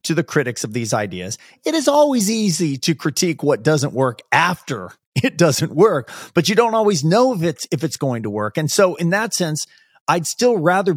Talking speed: 215 wpm